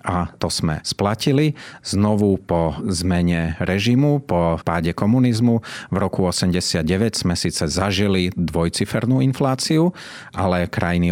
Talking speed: 115 wpm